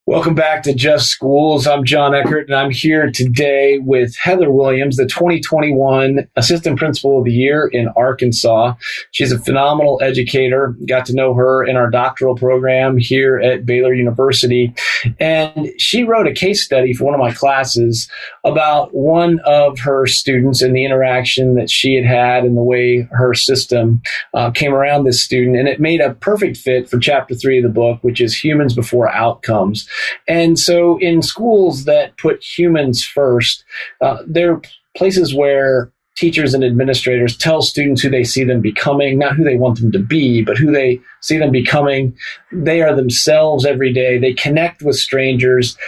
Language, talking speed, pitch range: English, 175 wpm, 125-155 Hz